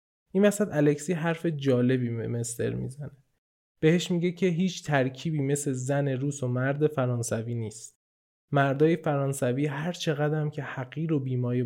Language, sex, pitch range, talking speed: Persian, male, 125-165 Hz, 150 wpm